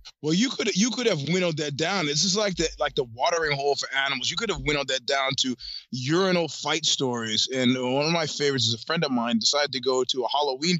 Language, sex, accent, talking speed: English, male, American, 250 wpm